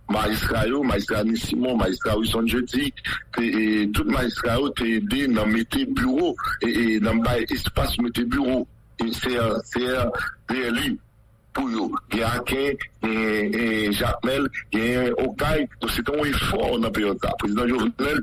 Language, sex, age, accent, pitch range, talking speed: English, male, 50-69, French, 110-130 Hz, 160 wpm